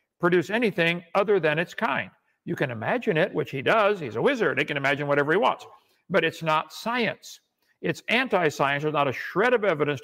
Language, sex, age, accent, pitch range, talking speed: English, male, 60-79, American, 155-195 Hz, 205 wpm